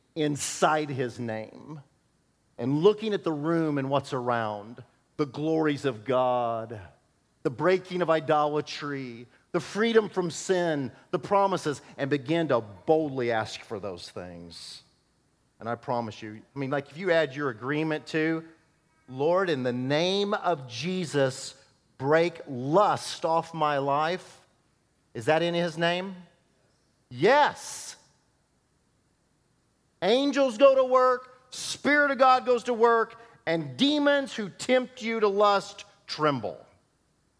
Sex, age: male, 50-69